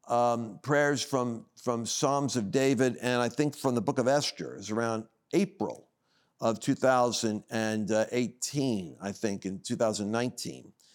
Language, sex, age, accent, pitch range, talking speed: English, male, 50-69, American, 115-140 Hz, 130 wpm